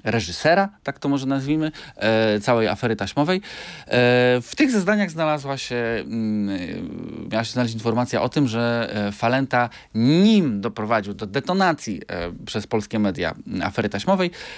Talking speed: 125 wpm